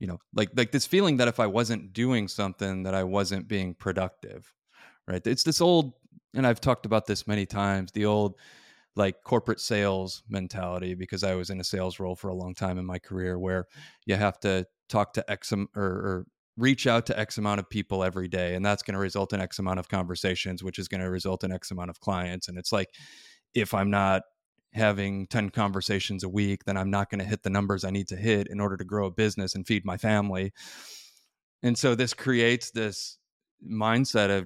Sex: male